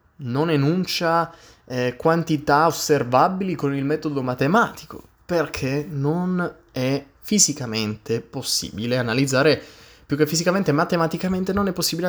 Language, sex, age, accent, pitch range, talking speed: Italian, male, 20-39, native, 105-145 Hz, 110 wpm